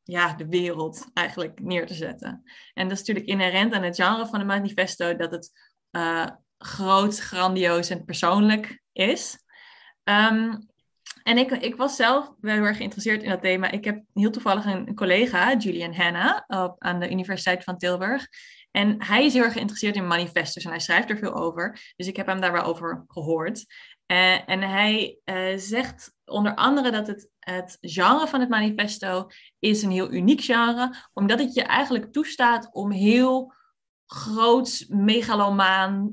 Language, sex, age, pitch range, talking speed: Dutch, female, 20-39, 180-225 Hz, 170 wpm